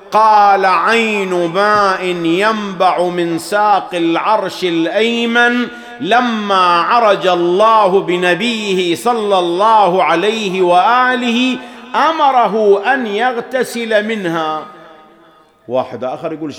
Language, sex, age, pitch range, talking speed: English, male, 50-69, 110-185 Hz, 85 wpm